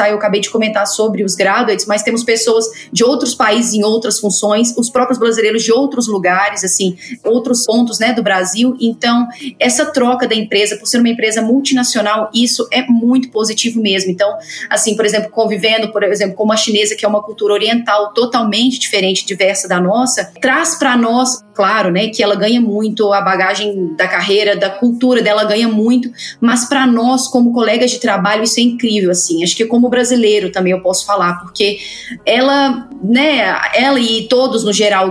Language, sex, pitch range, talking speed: Portuguese, female, 205-245 Hz, 185 wpm